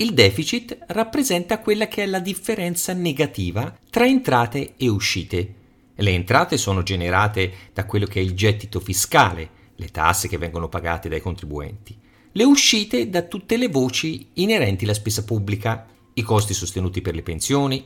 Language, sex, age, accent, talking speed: Italian, male, 40-59, native, 160 wpm